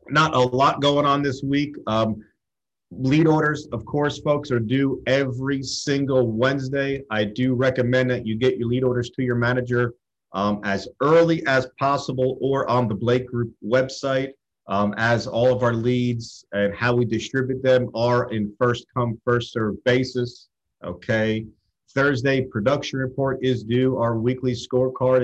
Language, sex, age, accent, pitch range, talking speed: English, male, 40-59, American, 115-135 Hz, 155 wpm